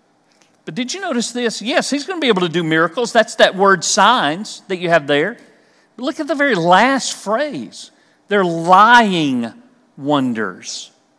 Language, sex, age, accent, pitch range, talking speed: English, male, 50-69, American, 195-280 Hz, 170 wpm